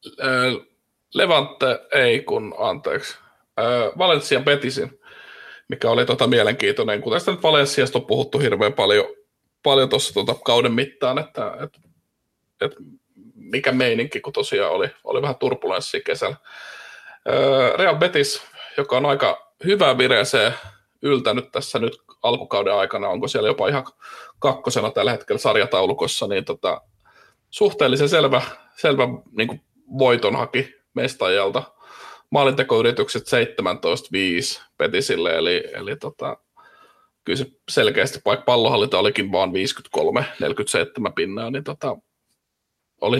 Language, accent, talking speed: Finnish, native, 110 wpm